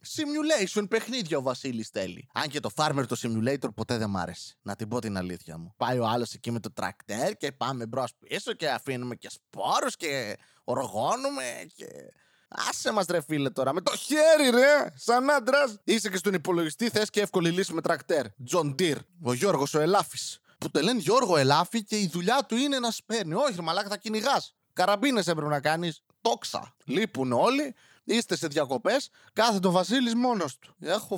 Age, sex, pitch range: 20-39, male, 120-200 Hz